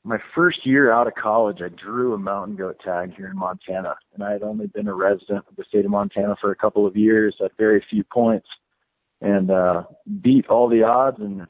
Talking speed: 225 wpm